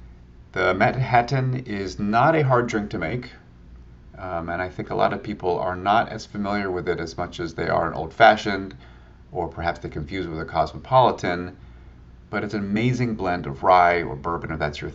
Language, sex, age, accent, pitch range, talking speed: English, male, 30-49, American, 70-105 Hz, 205 wpm